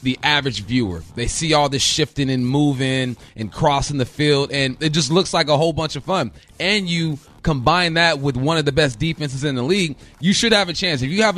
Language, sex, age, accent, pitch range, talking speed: English, male, 30-49, American, 135-170 Hz, 235 wpm